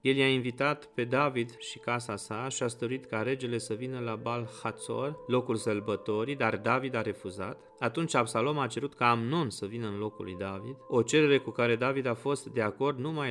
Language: Romanian